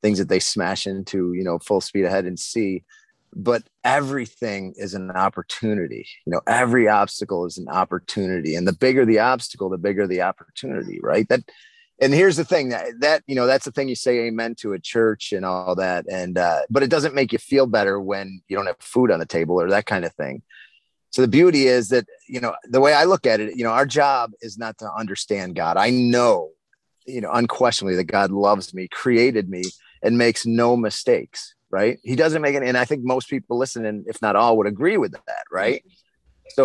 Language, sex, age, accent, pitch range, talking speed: English, male, 30-49, American, 105-145 Hz, 220 wpm